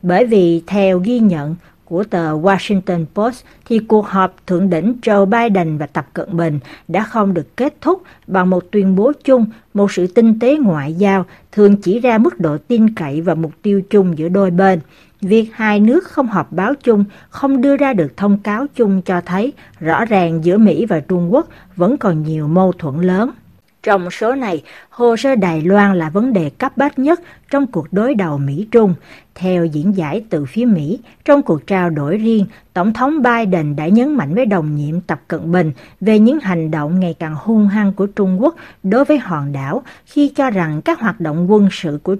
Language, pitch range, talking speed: Vietnamese, 170-230 Hz, 205 wpm